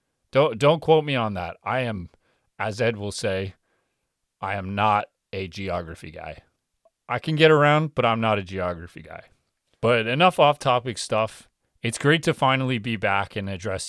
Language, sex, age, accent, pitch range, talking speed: English, male, 30-49, American, 95-120 Hz, 175 wpm